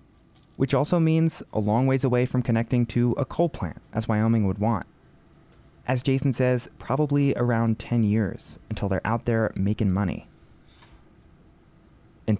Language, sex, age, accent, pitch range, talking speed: English, male, 20-39, American, 95-125 Hz, 150 wpm